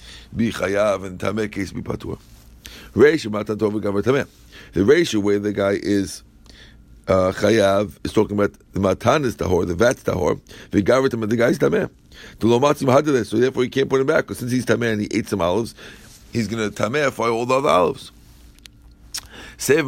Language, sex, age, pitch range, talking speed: English, male, 60-79, 100-130 Hz, 185 wpm